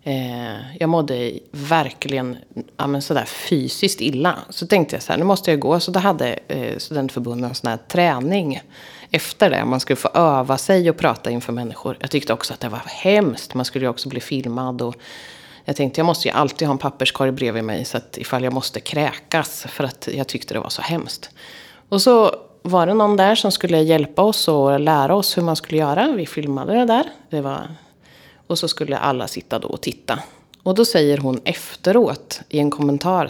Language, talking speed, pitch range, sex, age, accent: Swedish, 205 wpm, 140-200 Hz, female, 30-49, native